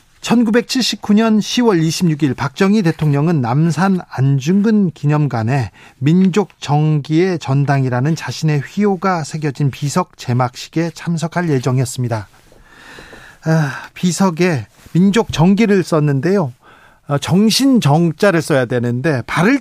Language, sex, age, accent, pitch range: Korean, male, 40-59, native, 135-170 Hz